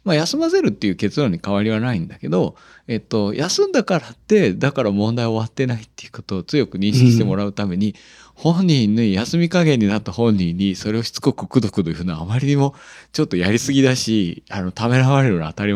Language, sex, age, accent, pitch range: Japanese, male, 40-59, native, 95-150 Hz